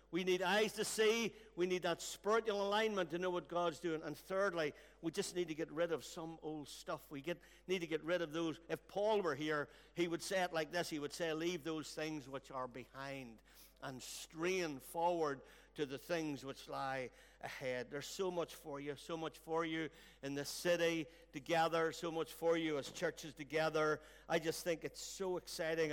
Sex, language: male, English